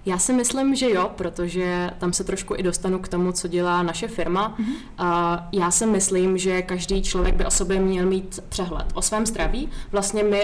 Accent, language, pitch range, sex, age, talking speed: native, Czech, 175-195 Hz, female, 20-39, 200 wpm